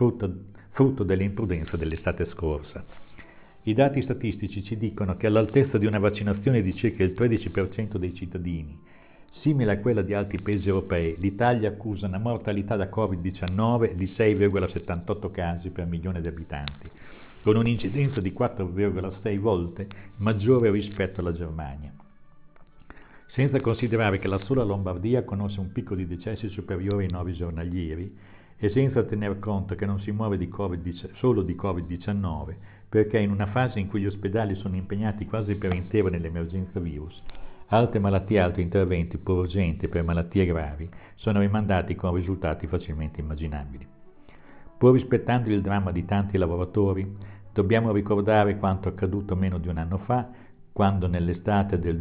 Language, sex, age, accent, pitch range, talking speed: Italian, male, 50-69, native, 90-105 Hz, 145 wpm